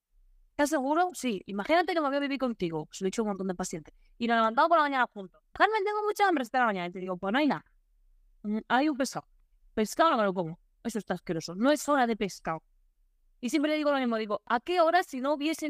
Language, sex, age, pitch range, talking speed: Spanish, female, 20-39, 200-280 Hz, 260 wpm